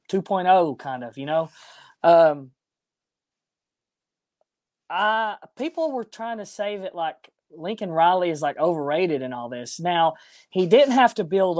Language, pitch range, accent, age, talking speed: English, 145-200 Hz, American, 20-39, 145 wpm